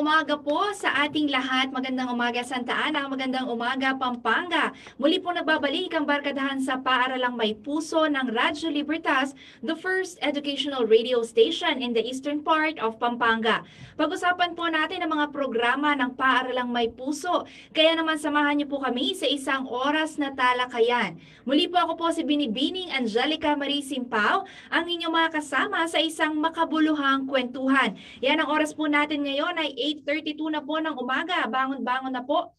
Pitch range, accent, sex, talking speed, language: 255-315 Hz, native, female, 160 wpm, Filipino